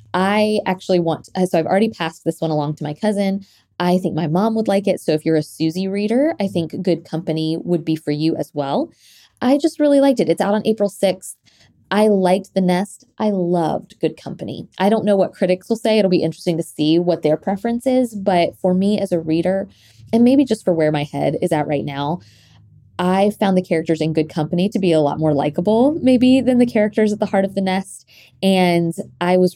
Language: English